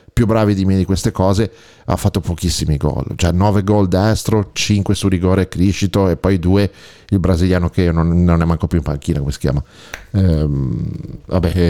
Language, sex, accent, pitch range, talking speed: Italian, male, native, 95-115 Hz, 190 wpm